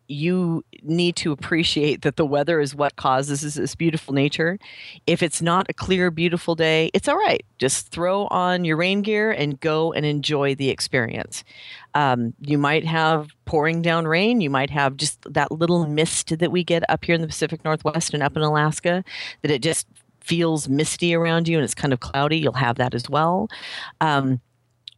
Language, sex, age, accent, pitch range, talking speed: English, female, 40-59, American, 135-165 Hz, 190 wpm